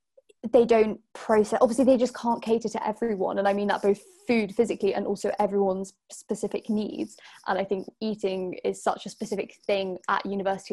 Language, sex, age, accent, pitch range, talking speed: English, female, 10-29, British, 195-220 Hz, 185 wpm